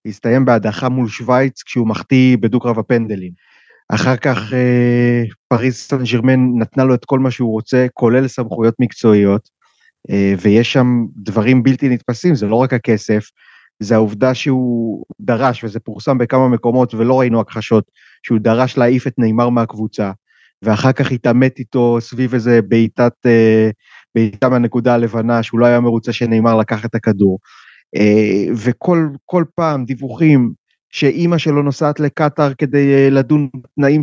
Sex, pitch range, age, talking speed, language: male, 110-135 Hz, 30-49, 145 wpm, Hebrew